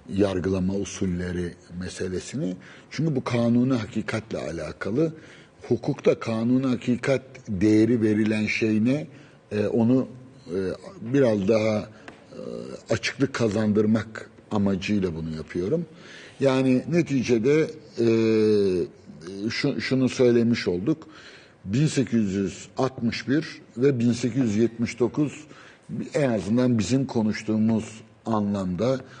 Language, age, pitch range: Turkish, 60-79, 105-130 Hz